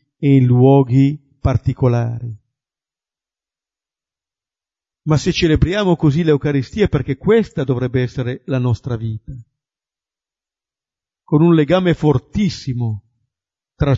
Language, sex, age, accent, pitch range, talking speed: Italian, male, 50-69, native, 120-160 Hz, 95 wpm